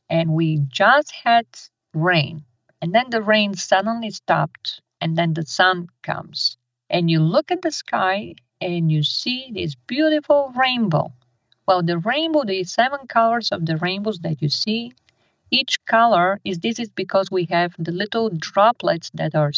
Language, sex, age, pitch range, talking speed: English, female, 50-69, 155-205 Hz, 160 wpm